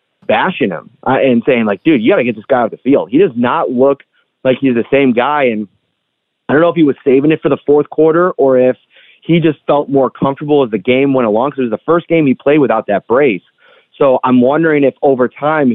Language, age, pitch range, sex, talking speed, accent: English, 30-49, 115-150 Hz, male, 250 wpm, American